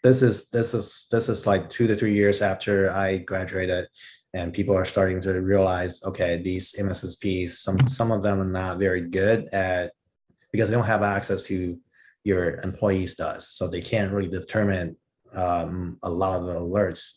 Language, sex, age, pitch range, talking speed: English, male, 30-49, 90-105 Hz, 180 wpm